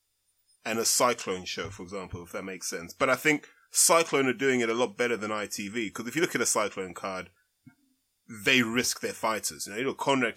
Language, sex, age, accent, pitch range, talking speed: English, male, 20-39, British, 100-135 Hz, 215 wpm